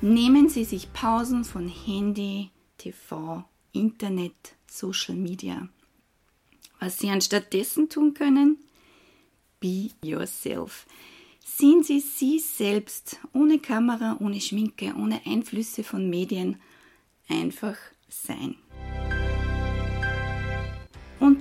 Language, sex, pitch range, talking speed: German, female, 185-255 Hz, 95 wpm